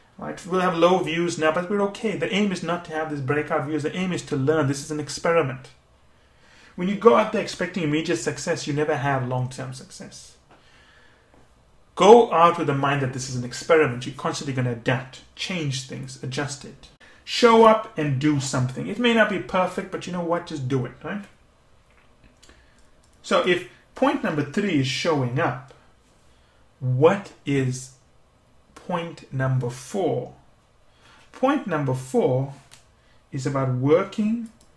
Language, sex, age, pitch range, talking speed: English, male, 30-49, 130-175 Hz, 165 wpm